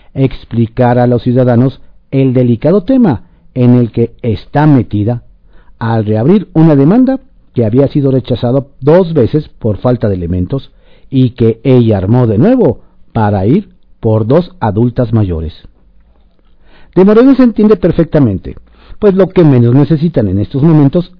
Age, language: 50-69, Spanish